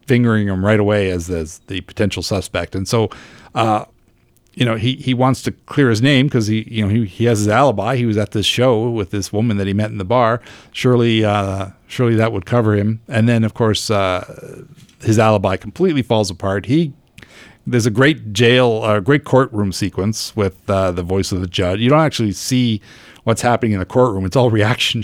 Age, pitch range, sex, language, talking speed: 50-69, 100-125 Hz, male, English, 215 wpm